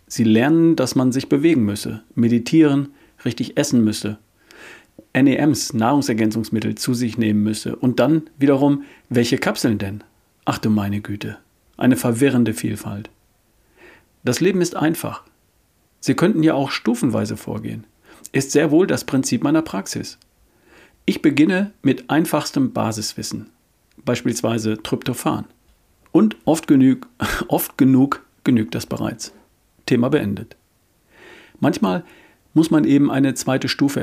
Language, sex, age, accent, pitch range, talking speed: German, male, 40-59, German, 110-145 Hz, 125 wpm